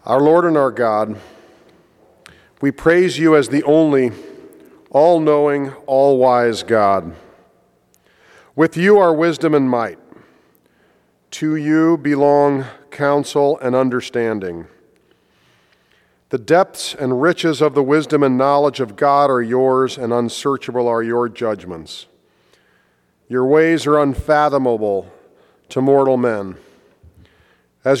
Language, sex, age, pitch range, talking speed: English, male, 40-59, 110-150 Hz, 110 wpm